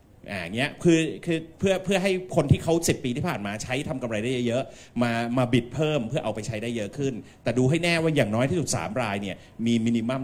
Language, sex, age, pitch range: Thai, male, 30-49, 110-145 Hz